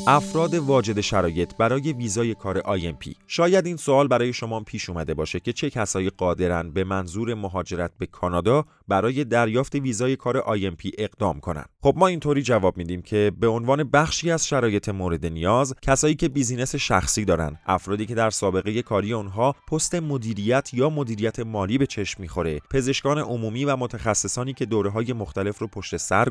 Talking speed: 170 wpm